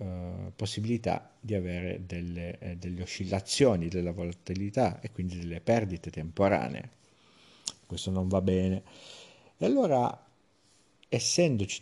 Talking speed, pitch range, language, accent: 100 wpm, 90-105 Hz, Italian, native